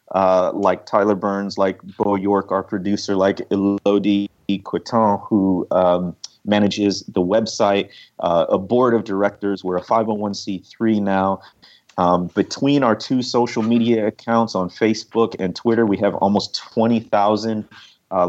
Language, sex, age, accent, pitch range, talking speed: English, male, 30-49, American, 100-120 Hz, 140 wpm